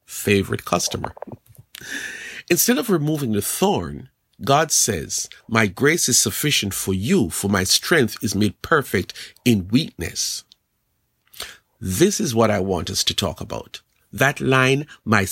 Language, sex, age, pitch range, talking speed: English, male, 50-69, 100-145 Hz, 135 wpm